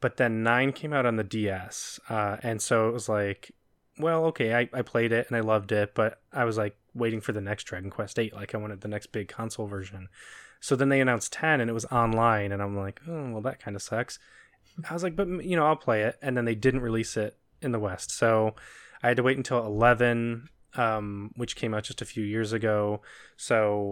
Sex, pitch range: male, 105-125 Hz